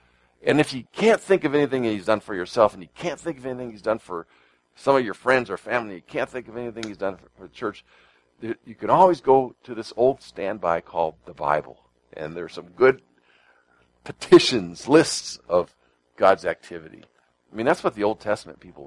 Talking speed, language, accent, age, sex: 205 wpm, English, American, 50-69, male